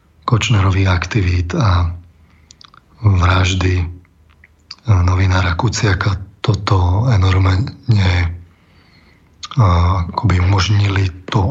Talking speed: 50 wpm